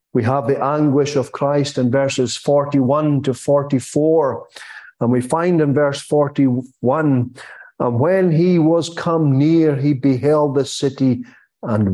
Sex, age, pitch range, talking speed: male, 50-69, 130-165 Hz, 140 wpm